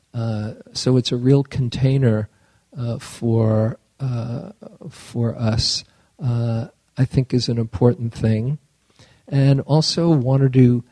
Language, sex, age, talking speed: English, male, 50-69, 120 wpm